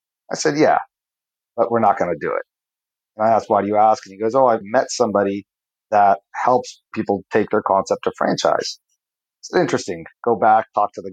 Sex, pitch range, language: male, 100-125 Hz, English